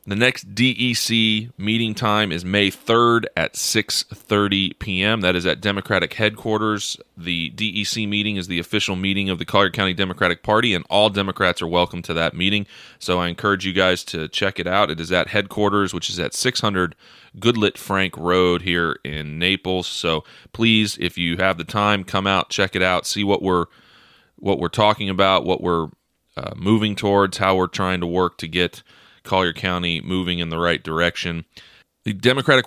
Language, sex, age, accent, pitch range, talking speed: English, male, 30-49, American, 90-105 Hz, 180 wpm